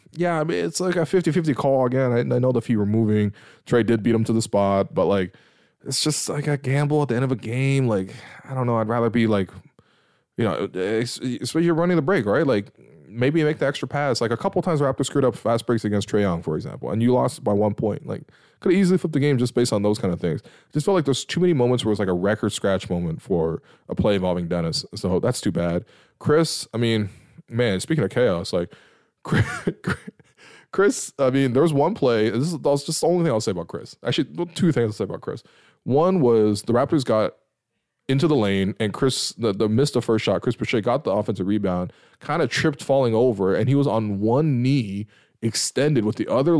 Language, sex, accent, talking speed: English, male, American, 245 wpm